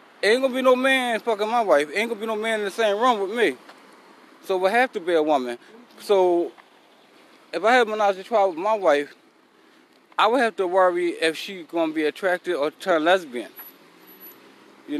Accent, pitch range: American, 180-245 Hz